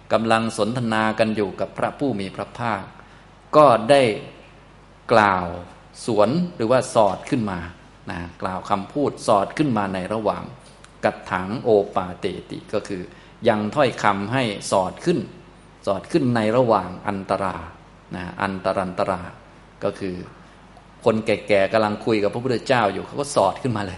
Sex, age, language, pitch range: male, 20-39, Thai, 100-125 Hz